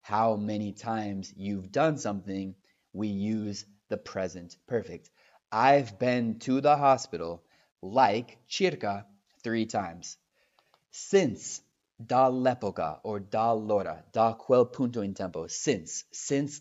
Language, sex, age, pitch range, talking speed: Italian, male, 30-49, 100-125 Hz, 115 wpm